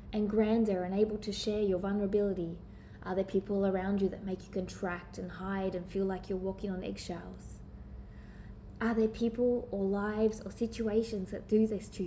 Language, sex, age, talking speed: English, female, 20-39, 185 wpm